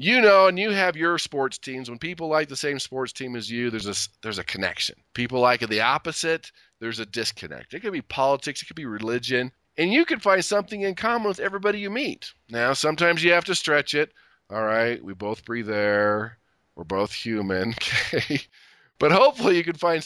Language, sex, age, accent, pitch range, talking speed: English, male, 40-59, American, 120-195 Hz, 210 wpm